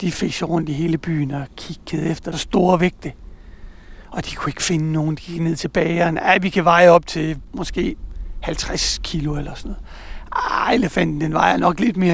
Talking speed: 205 wpm